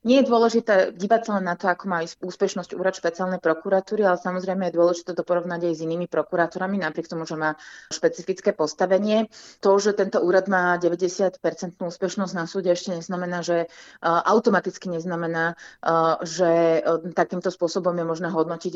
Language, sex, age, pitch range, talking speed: Slovak, female, 30-49, 170-190 Hz, 155 wpm